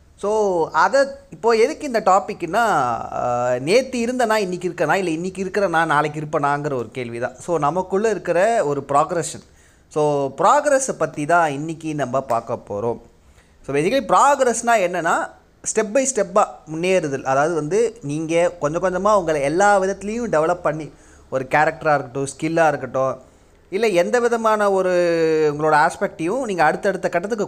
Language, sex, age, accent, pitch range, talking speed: Tamil, male, 20-39, native, 140-200 Hz, 135 wpm